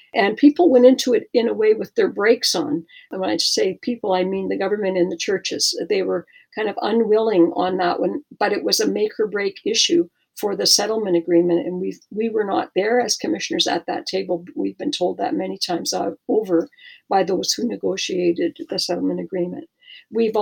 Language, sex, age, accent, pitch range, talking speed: English, female, 50-69, American, 200-320 Hz, 205 wpm